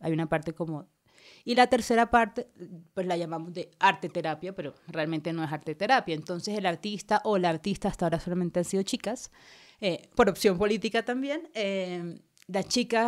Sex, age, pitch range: female, 20-39, 175-220 Hz